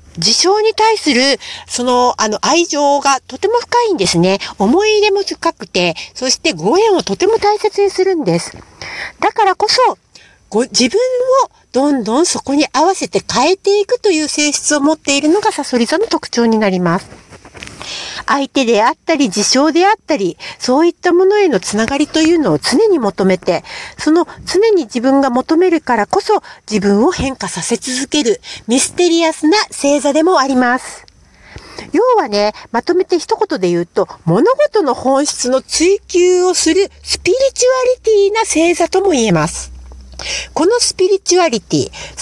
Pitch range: 235-390 Hz